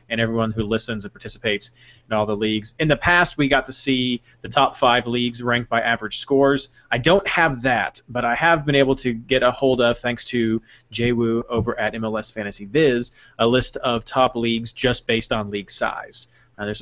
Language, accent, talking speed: English, American, 205 wpm